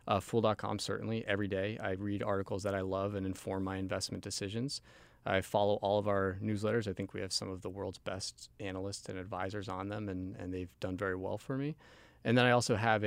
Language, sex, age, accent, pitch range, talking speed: English, male, 20-39, American, 95-110 Hz, 225 wpm